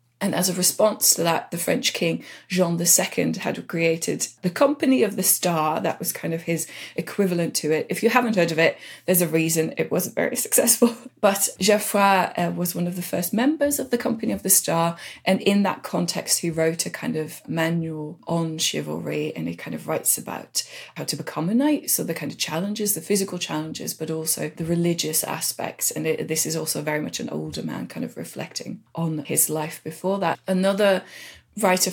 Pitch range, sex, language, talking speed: 160-195 Hz, female, English, 205 wpm